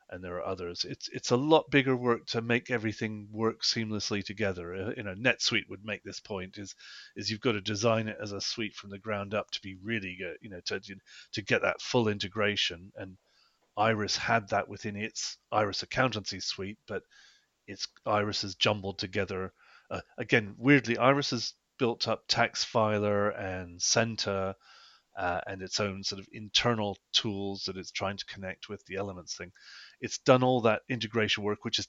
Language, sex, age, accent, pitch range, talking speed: English, male, 30-49, British, 100-120 Hz, 185 wpm